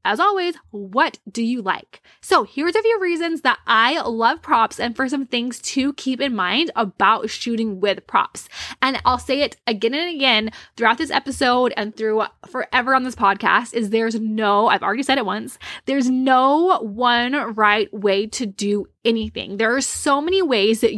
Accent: American